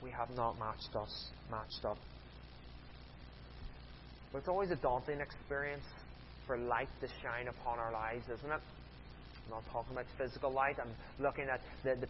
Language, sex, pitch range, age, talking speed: English, male, 110-150 Hz, 30-49, 165 wpm